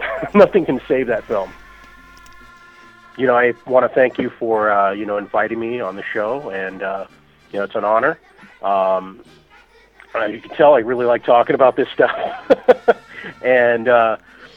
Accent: American